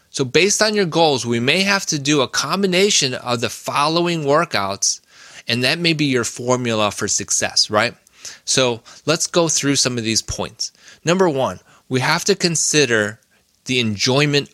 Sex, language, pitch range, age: male, English, 115-150 Hz, 20-39